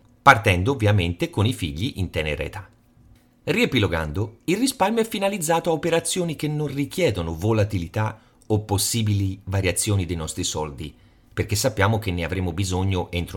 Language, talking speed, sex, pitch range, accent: Italian, 145 wpm, male, 95-140 Hz, native